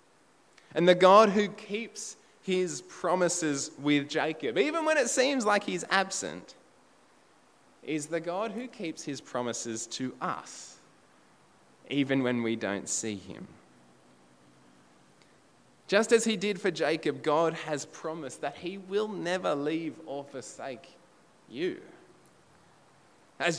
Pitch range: 120-180 Hz